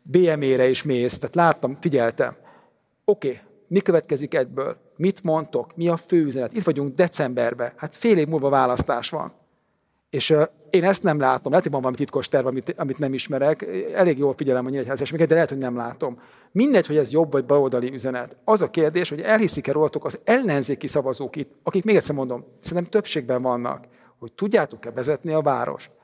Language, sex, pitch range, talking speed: Hungarian, male, 135-195 Hz, 185 wpm